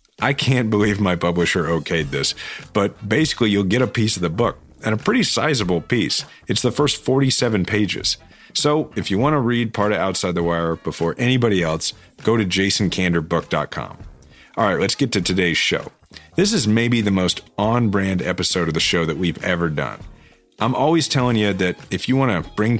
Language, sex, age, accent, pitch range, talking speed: English, male, 40-59, American, 85-110 Hz, 195 wpm